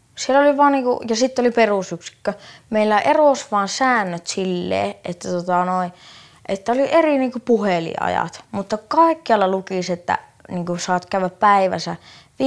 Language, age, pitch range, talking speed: Finnish, 20-39, 180-220 Hz, 135 wpm